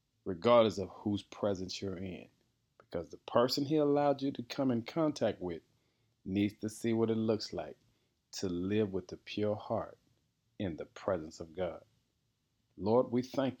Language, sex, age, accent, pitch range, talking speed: English, male, 40-59, American, 110-130 Hz, 170 wpm